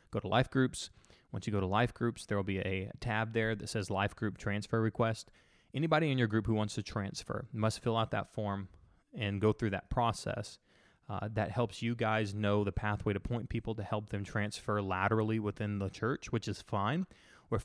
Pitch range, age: 100-115 Hz, 20-39